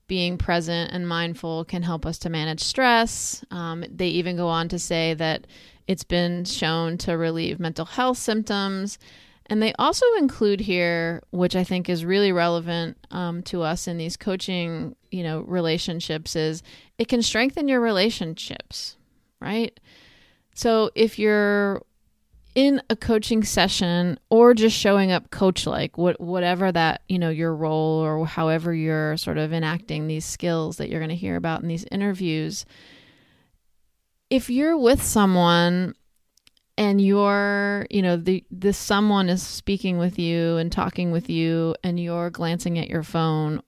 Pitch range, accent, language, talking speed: 165-200 Hz, American, English, 155 wpm